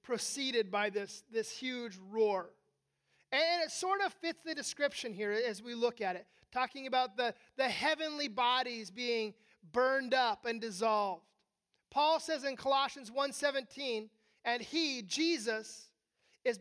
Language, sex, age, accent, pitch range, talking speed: English, male, 30-49, American, 240-320 Hz, 140 wpm